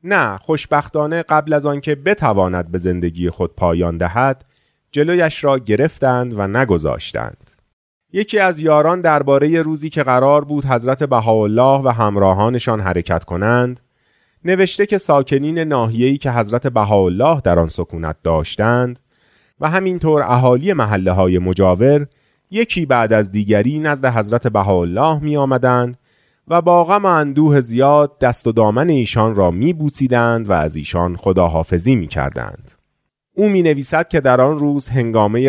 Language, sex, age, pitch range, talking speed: Persian, male, 30-49, 95-145 Hz, 130 wpm